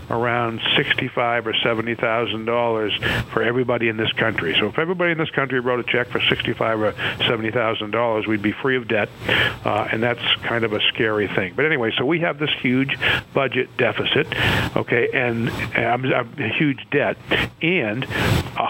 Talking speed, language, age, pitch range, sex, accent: 165 wpm, English, 50-69, 115-135 Hz, male, American